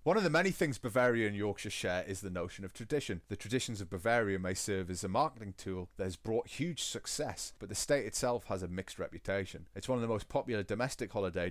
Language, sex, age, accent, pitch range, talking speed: English, male, 30-49, British, 95-125 Hz, 235 wpm